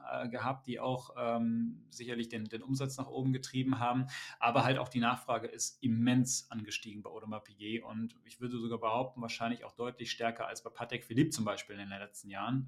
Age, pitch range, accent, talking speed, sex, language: 30-49, 115-130 Hz, German, 200 wpm, male, German